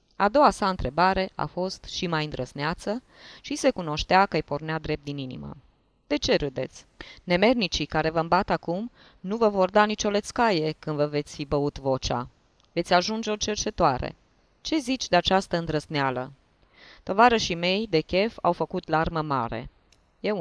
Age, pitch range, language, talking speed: 20-39, 145-200 Hz, Romanian, 170 wpm